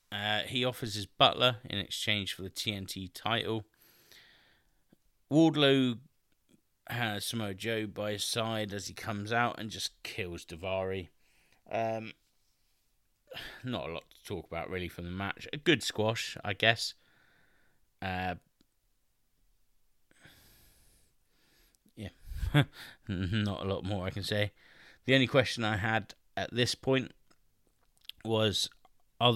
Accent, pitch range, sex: British, 95-120 Hz, male